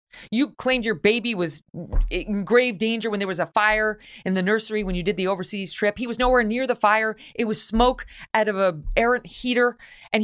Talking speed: 215 wpm